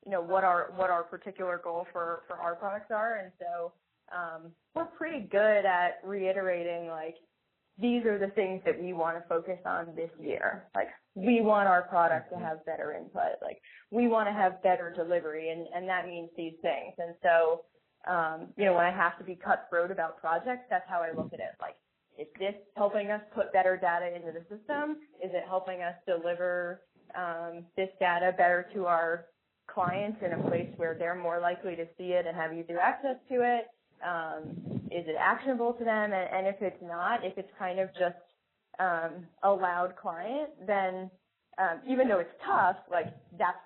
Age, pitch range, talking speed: 20-39, 170-200 Hz, 195 wpm